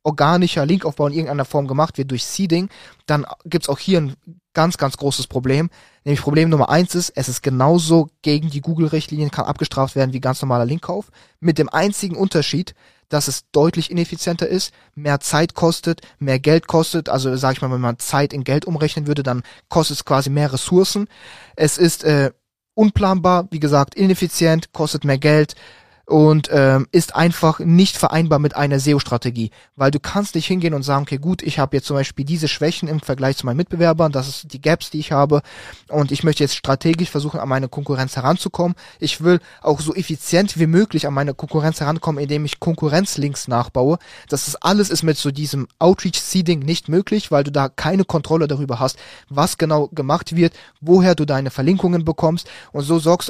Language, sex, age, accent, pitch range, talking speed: German, male, 20-39, German, 140-170 Hz, 190 wpm